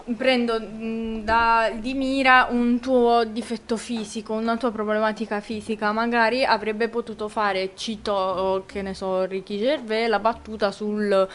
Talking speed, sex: 130 wpm, female